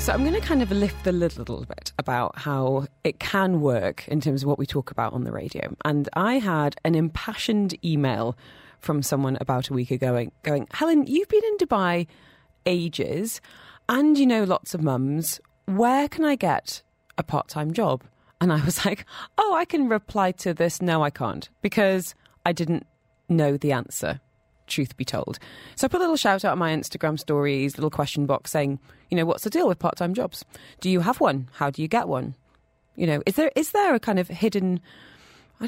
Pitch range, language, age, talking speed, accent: 145-220 Hz, English, 30-49, 210 wpm, British